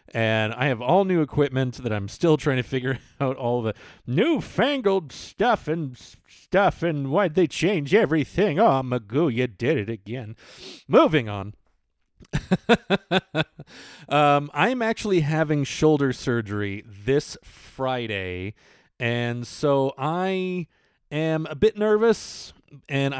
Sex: male